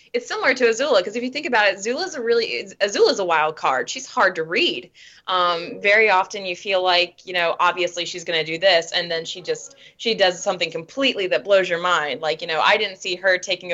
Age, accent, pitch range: 20-39, American, 165-210 Hz